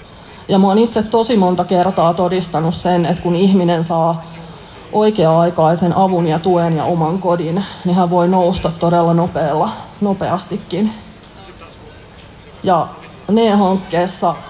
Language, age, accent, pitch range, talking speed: Finnish, 30-49, native, 175-200 Hz, 115 wpm